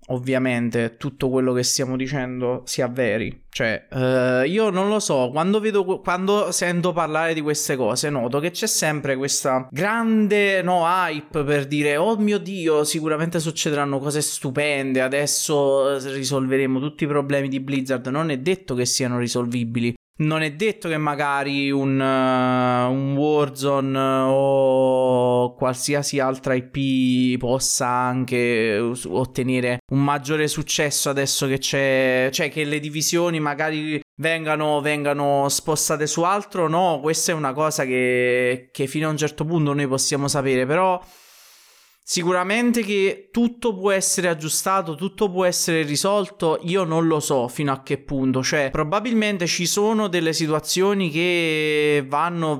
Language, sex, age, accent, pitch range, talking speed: Italian, male, 20-39, native, 130-160 Hz, 140 wpm